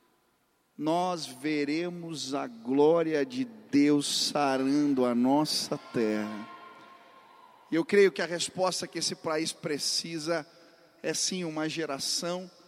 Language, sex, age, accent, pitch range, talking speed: Portuguese, male, 40-59, Brazilian, 155-200 Hz, 110 wpm